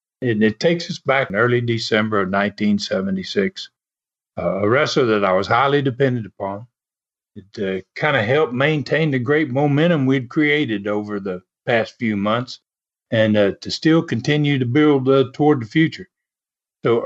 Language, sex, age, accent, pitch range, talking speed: English, male, 60-79, American, 115-165 Hz, 165 wpm